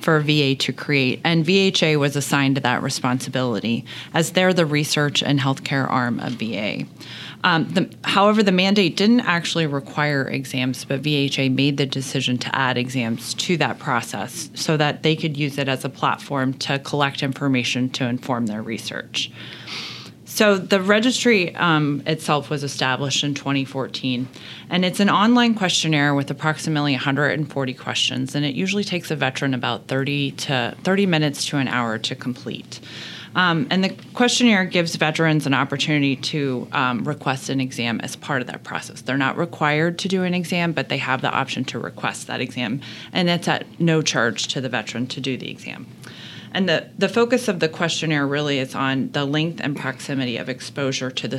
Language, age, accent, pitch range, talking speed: English, 30-49, American, 130-165 Hz, 175 wpm